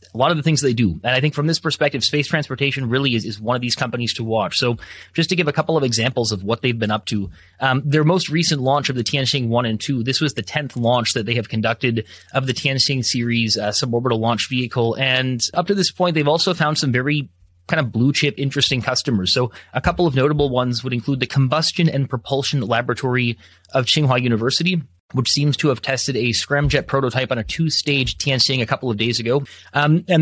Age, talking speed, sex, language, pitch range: 30-49, 230 wpm, male, English, 115-145 Hz